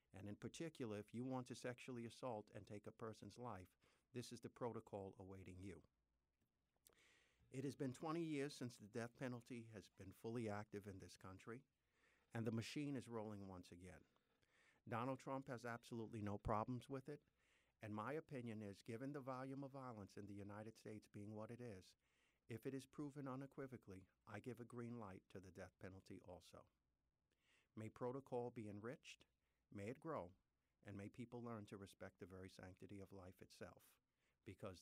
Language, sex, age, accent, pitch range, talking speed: English, male, 50-69, American, 95-120 Hz, 180 wpm